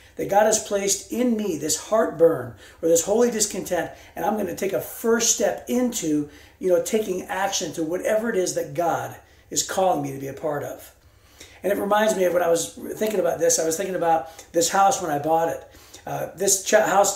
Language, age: English, 40-59